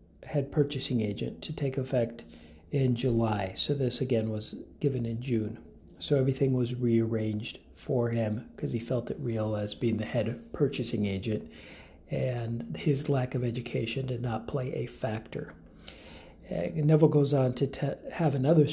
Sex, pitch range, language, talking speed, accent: male, 115-140 Hz, English, 160 wpm, American